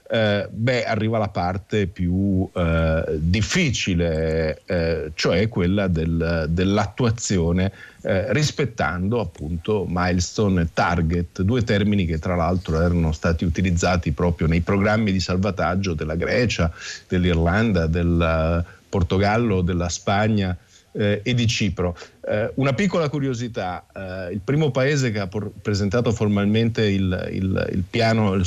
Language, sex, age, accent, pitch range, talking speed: Italian, male, 50-69, native, 90-115 Hz, 115 wpm